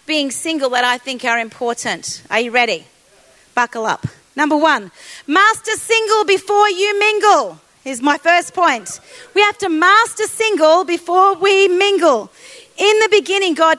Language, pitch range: English, 265-360 Hz